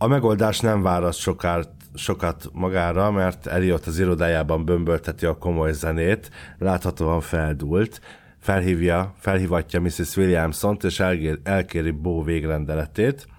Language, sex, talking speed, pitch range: Hungarian, male, 110 wpm, 80-100 Hz